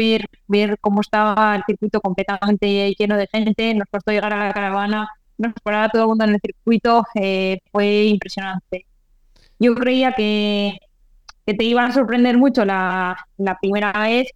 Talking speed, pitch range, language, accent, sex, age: 165 wpm, 195-220 Hz, Spanish, Spanish, female, 20-39